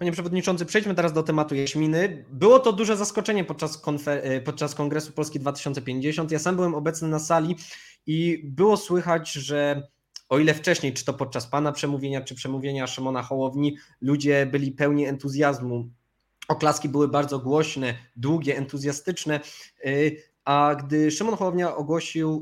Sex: male